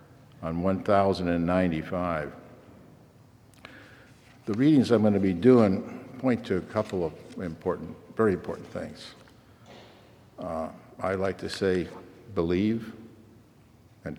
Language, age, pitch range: English, 60-79, 95-125 Hz